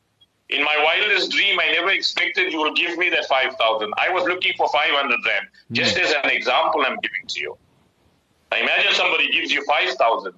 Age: 50-69